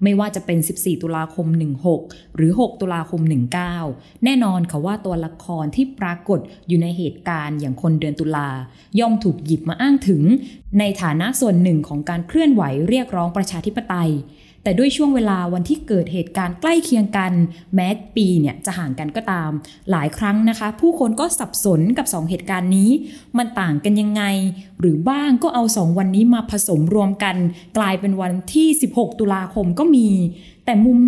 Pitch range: 170-215 Hz